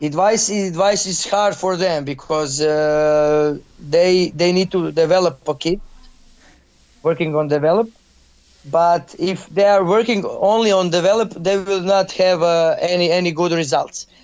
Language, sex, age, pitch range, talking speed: English, male, 30-49, 170-220 Hz, 150 wpm